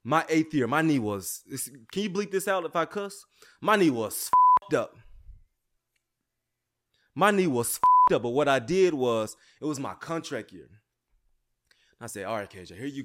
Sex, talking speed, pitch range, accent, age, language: male, 190 wpm, 110-155 Hz, American, 20-39, English